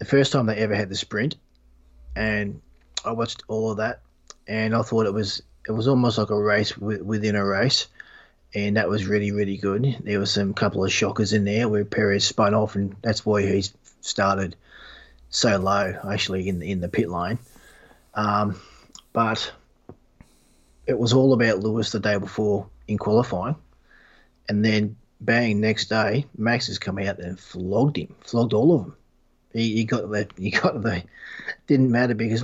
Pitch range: 100-115 Hz